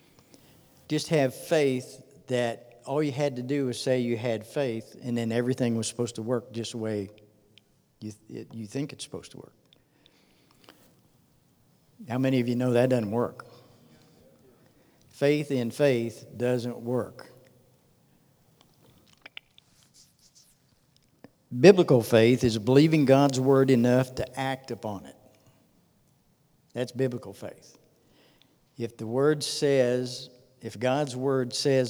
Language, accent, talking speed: English, American, 125 wpm